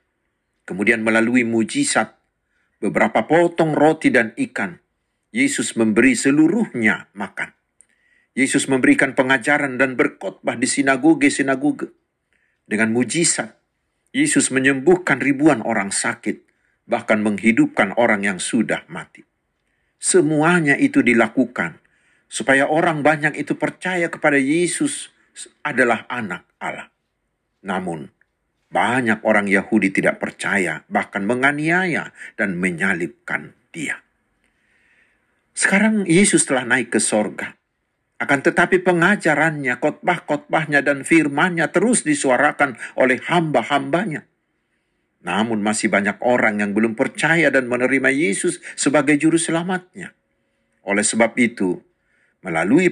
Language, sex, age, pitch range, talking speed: Indonesian, male, 50-69, 120-175 Hz, 100 wpm